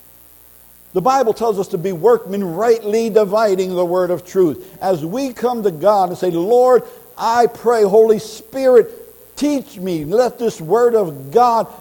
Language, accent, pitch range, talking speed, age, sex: English, American, 145-220 Hz, 165 wpm, 60-79, male